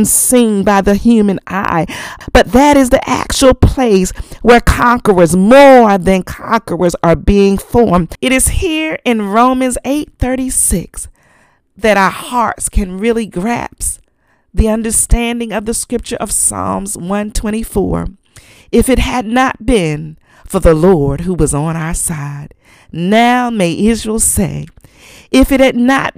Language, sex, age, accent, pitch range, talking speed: English, female, 40-59, American, 180-245 Hz, 140 wpm